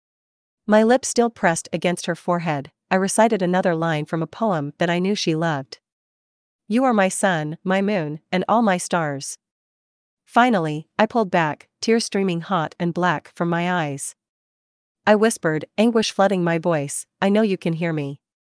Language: English